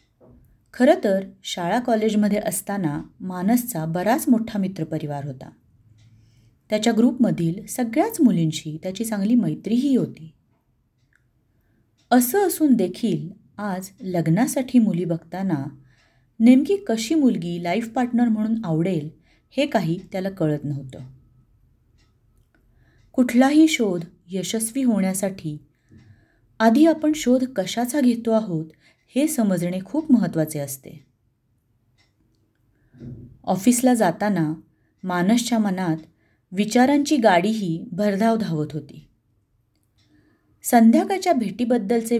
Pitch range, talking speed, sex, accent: 140-230 Hz, 80 wpm, female, native